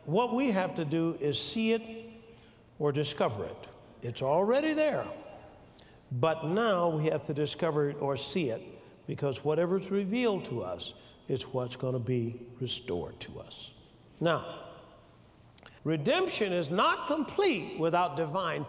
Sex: male